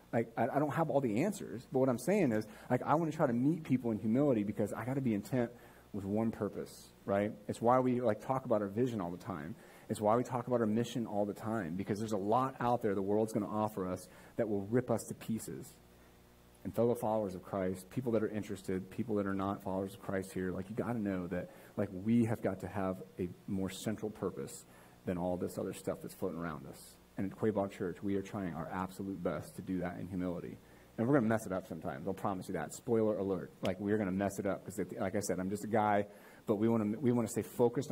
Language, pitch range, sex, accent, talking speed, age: English, 95-115 Hz, male, American, 255 wpm, 30-49